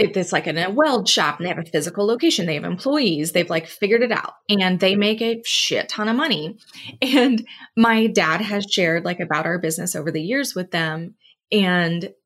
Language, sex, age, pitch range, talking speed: English, female, 20-39, 175-230 Hz, 210 wpm